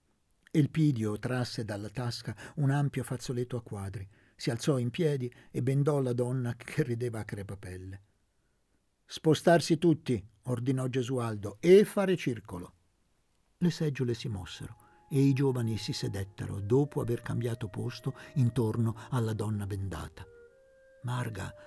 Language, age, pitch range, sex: Italian, 50-69, 105-150 Hz, male